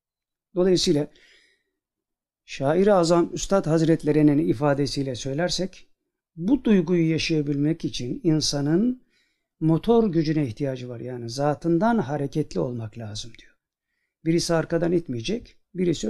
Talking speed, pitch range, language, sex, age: 95 wpm, 150-210 Hz, Turkish, male, 60-79